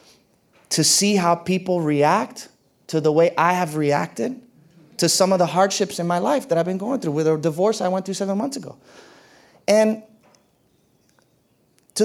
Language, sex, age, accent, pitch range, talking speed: English, male, 30-49, American, 170-235 Hz, 175 wpm